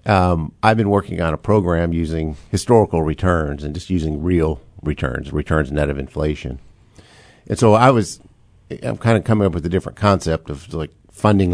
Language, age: English, 50-69